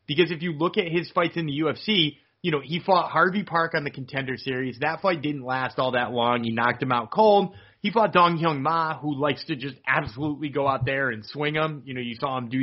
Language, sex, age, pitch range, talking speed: English, male, 30-49, 145-205 Hz, 255 wpm